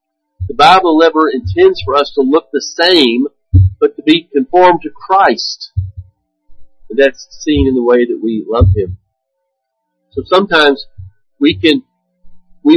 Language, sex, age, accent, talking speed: English, male, 50-69, American, 145 wpm